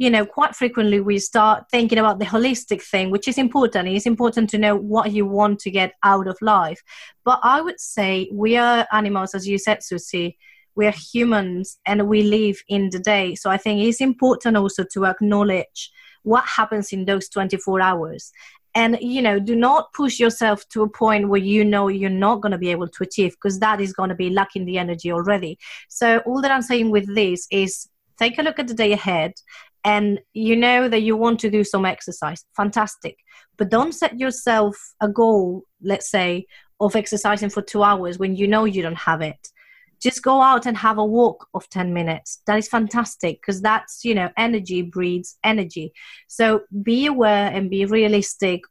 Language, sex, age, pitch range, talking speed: English, female, 30-49, 190-225 Hz, 200 wpm